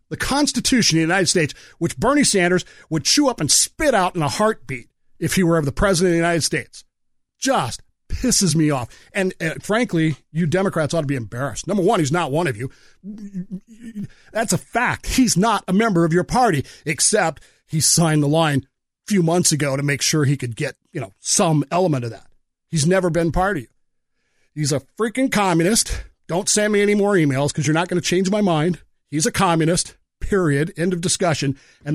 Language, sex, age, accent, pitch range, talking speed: English, male, 40-59, American, 155-220 Hz, 205 wpm